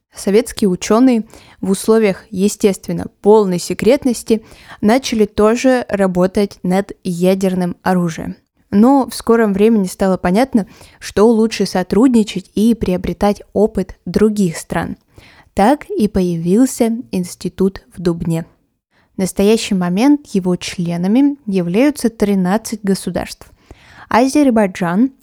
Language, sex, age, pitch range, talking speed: Russian, female, 20-39, 185-235 Hz, 100 wpm